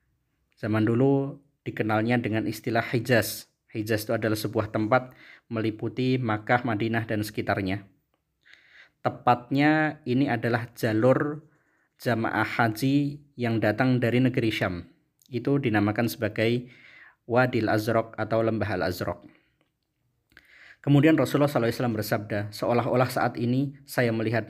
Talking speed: 110 wpm